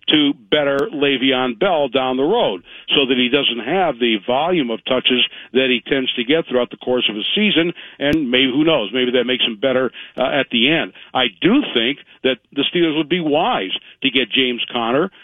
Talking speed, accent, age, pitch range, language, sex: 210 wpm, American, 60-79, 130-170 Hz, English, male